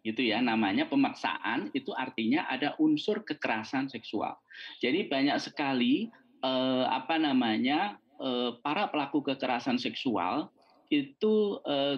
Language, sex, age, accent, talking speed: Indonesian, male, 20-39, native, 115 wpm